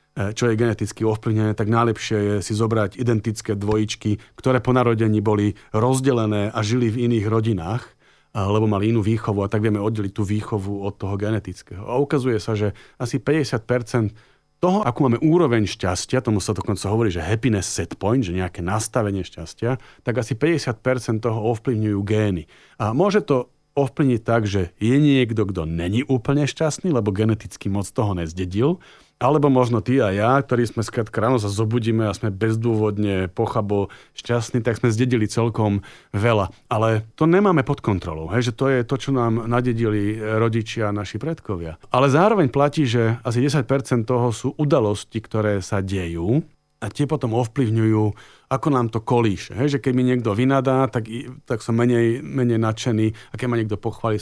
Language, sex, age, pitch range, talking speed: Slovak, male, 40-59, 105-125 Hz, 170 wpm